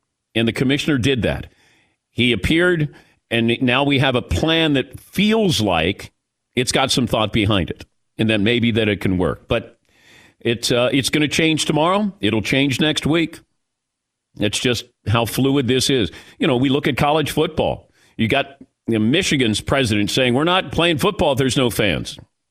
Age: 50-69